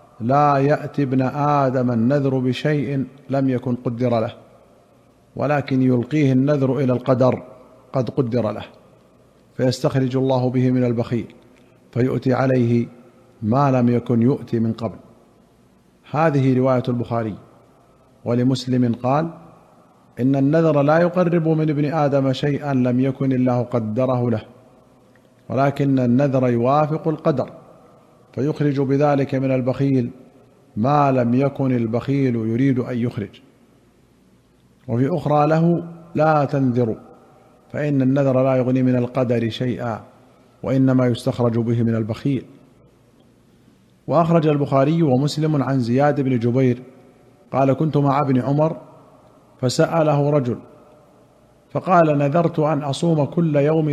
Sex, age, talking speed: male, 50-69, 110 wpm